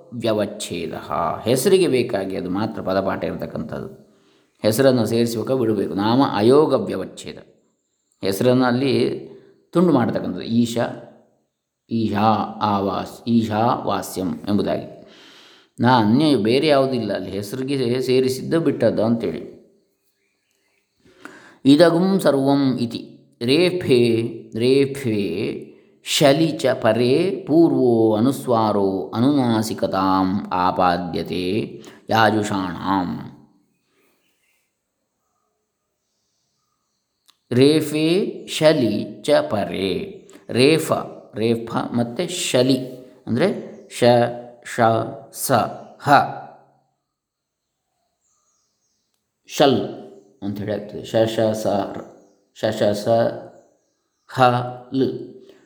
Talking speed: 60 wpm